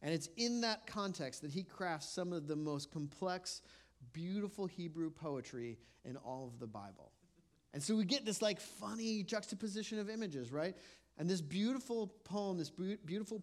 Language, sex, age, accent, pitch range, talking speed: English, male, 40-59, American, 120-185 Hz, 170 wpm